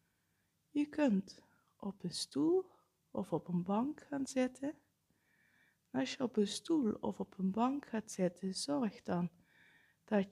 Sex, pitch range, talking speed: female, 185-235 Hz, 150 wpm